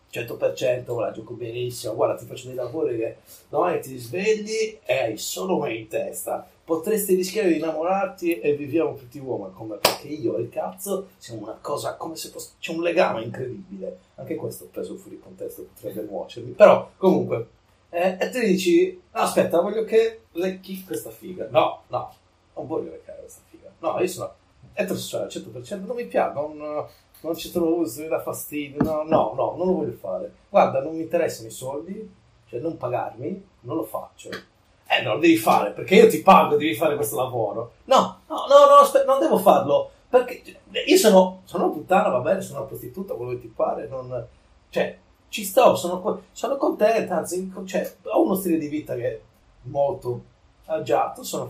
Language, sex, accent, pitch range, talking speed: Italian, male, native, 155-220 Hz, 190 wpm